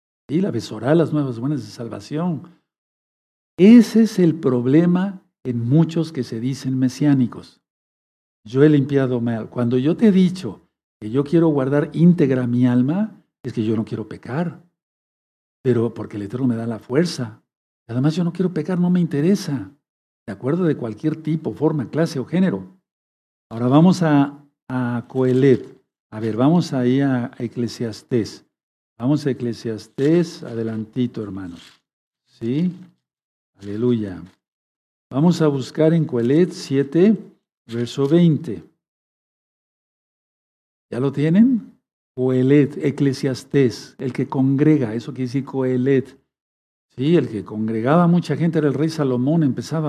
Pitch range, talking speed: 120-160 Hz, 135 wpm